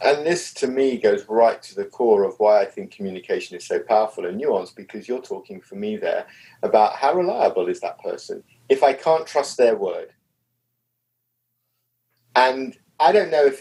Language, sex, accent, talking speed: English, male, British, 185 wpm